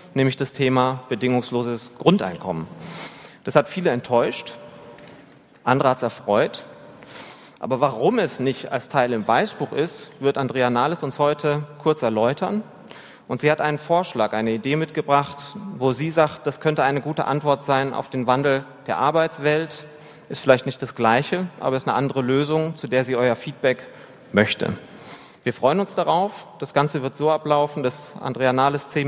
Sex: male